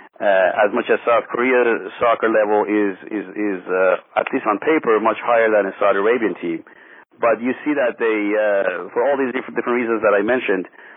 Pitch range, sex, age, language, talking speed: 95-120 Hz, male, 40-59, English, 210 wpm